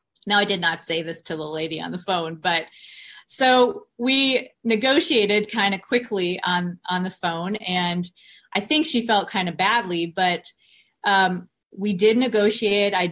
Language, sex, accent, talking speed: English, female, American, 170 wpm